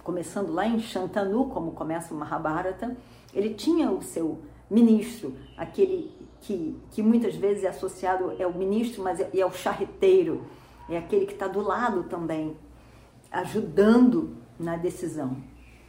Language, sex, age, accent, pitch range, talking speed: Portuguese, female, 50-69, Brazilian, 170-245 Hz, 145 wpm